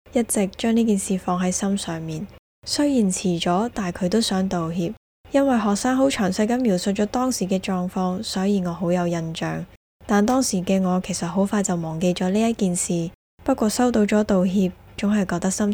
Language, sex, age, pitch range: Chinese, female, 10-29, 180-225 Hz